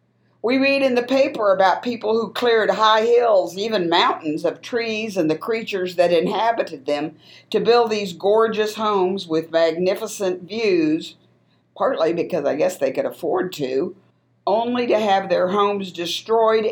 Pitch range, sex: 180-235 Hz, female